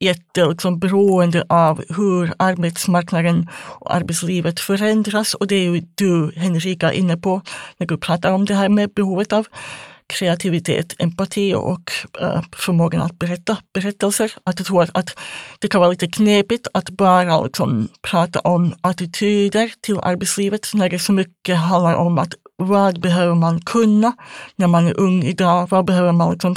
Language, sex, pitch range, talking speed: Swedish, female, 170-200 Hz, 155 wpm